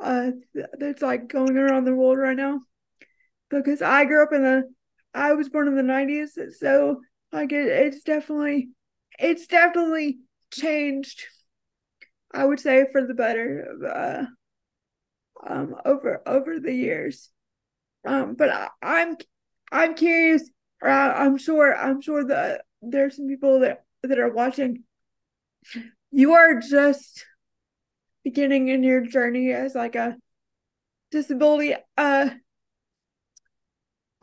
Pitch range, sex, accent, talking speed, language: 270-310 Hz, female, American, 130 wpm, English